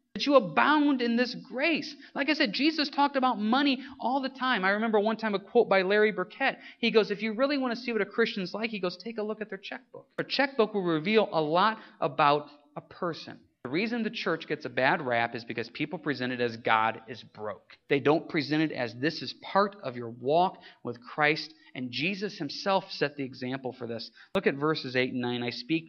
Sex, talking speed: male, 230 wpm